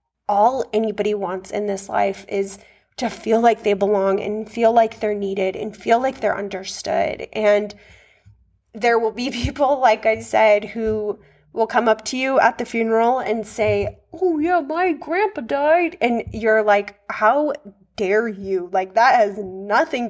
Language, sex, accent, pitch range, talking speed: English, female, American, 195-225 Hz, 165 wpm